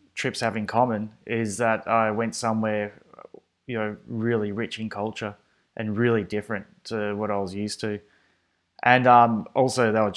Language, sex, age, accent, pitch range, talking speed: English, male, 20-39, Australian, 100-115 Hz, 170 wpm